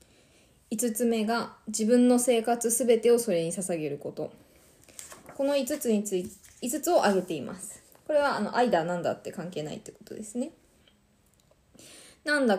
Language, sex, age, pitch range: Japanese, female, 20-39, 195-250 Hz